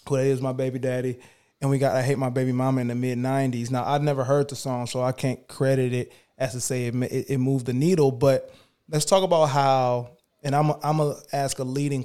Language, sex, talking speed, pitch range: English, male, 250 wpm, 125-145 Hz